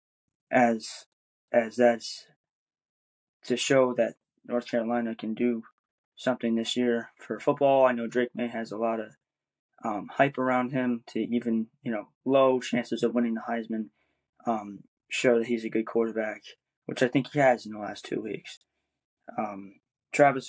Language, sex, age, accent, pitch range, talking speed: English, male, 20-39, American, 115-130 Hz, 165 wpm